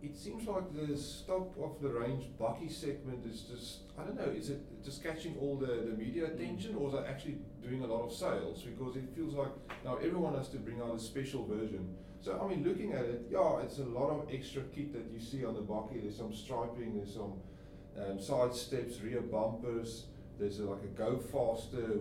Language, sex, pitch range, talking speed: English, male, 105-135 Hz, 220 wpm